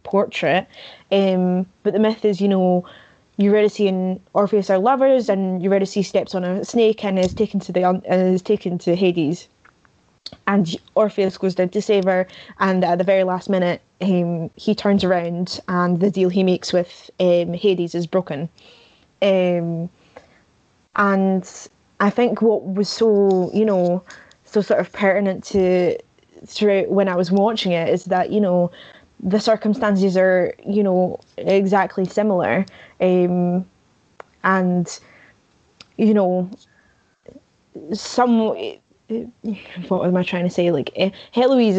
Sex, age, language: female, 20-39, English